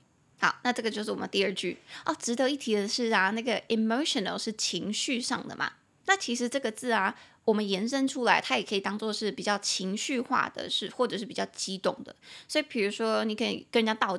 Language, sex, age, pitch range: Chinese, female, 20-39, 195-245 Hz